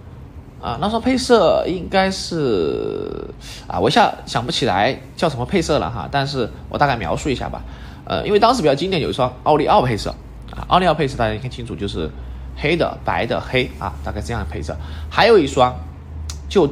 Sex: male